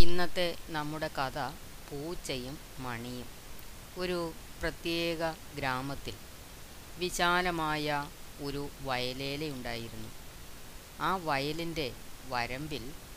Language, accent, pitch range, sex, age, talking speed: Malayalam, native, 125-165 Hz, female, 30-49, 65 wpm